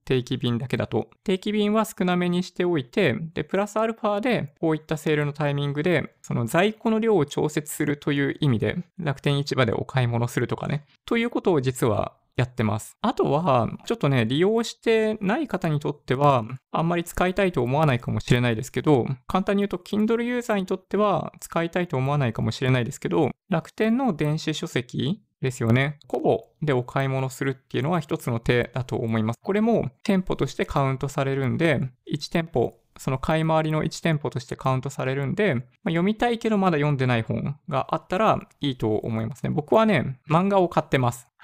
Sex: male